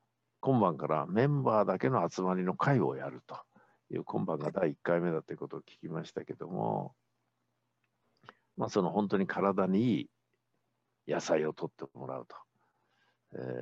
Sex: male